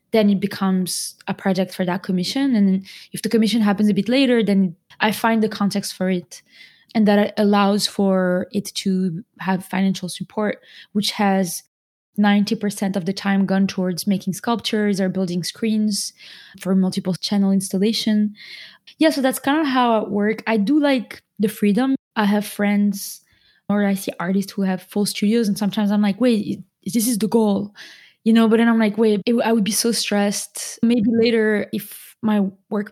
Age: 20-39